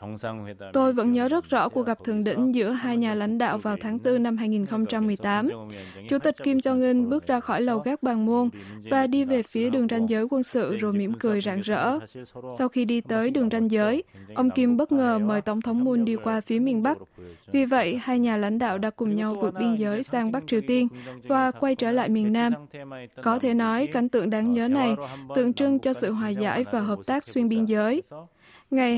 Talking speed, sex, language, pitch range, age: 225 wpm, female, Vietnamese, 220-255 Hz, 20-39